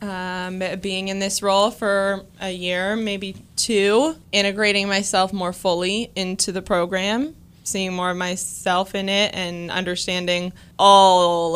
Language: English